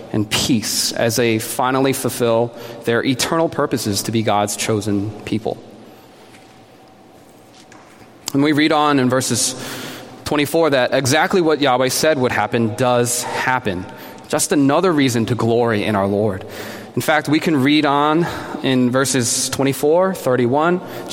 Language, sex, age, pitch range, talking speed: English, male, 20-39, 115-140 Hz, 135 wpm